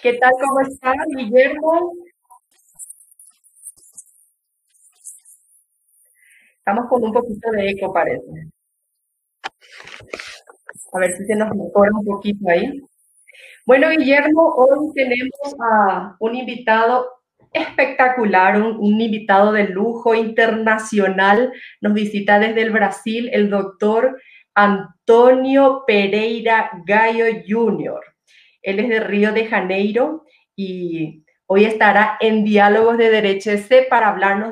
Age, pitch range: 30-49, 190-230 Hz